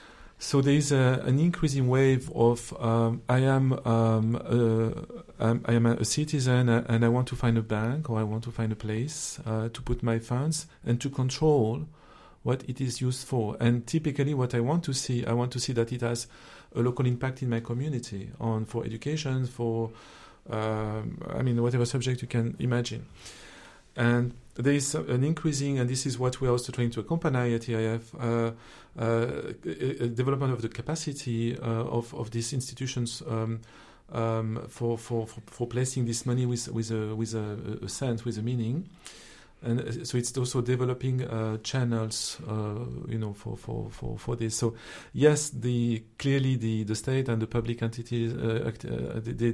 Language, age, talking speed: English, 40-59, 185 wpm